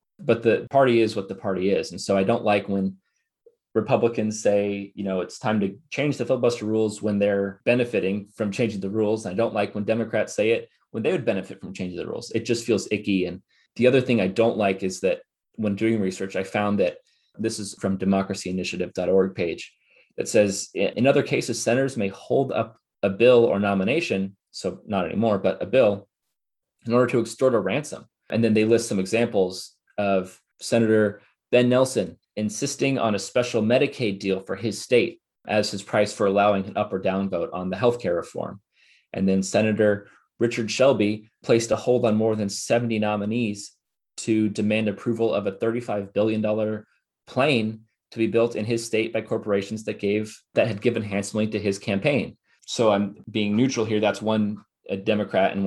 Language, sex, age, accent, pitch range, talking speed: English, male, 20-39, American, 100-115 Hz, 190 wpm